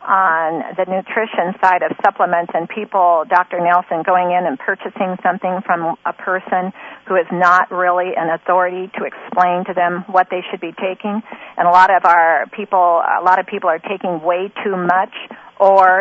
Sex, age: female, 40-59